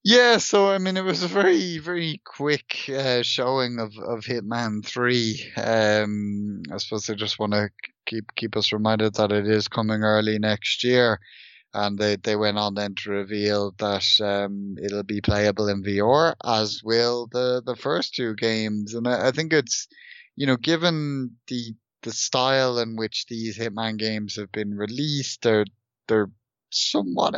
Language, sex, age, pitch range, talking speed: English, male, 20-39, 105-125 Hz, 170 wpm